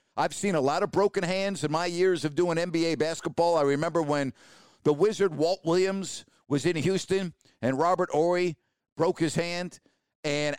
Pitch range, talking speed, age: 150-185 Hz, 175 wpm, 50-69